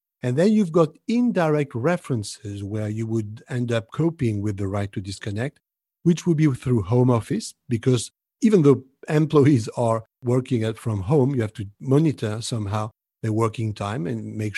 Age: 50-69